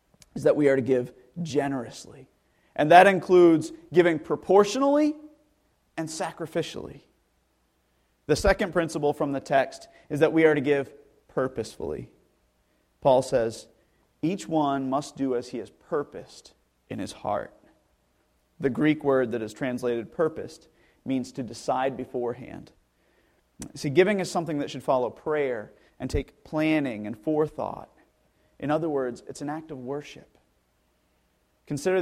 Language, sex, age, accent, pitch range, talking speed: English, male, 30-49, American, 135-195 Hz, 135 wpm